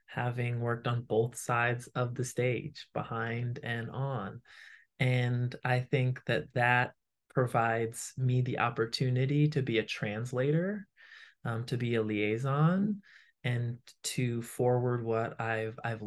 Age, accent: 20-39, American